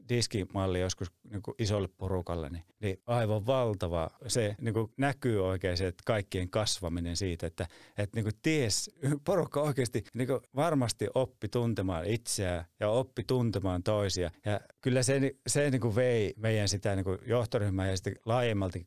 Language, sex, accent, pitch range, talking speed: Finnish, male, native, 100-120 Hz, 145 wpm